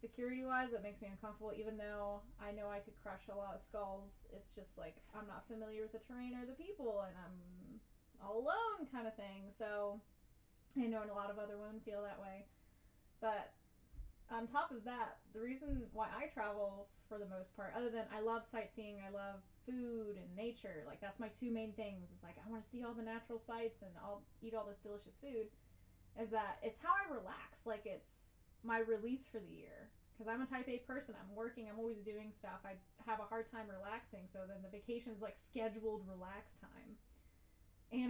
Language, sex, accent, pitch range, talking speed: English, female, American, 205-240 Hz, 215 wpm